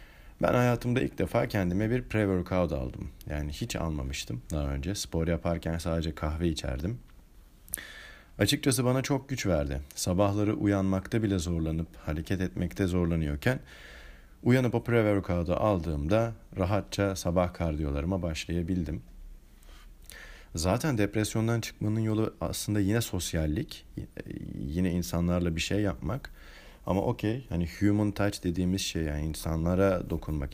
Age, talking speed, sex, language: 40-59, 120 wpm, male, Turkish